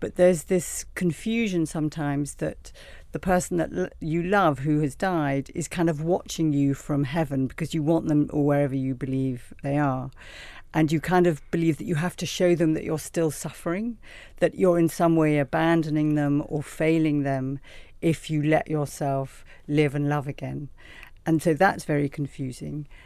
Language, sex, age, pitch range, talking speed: English, female, 50-69, 145-175 Hz, 180 wpm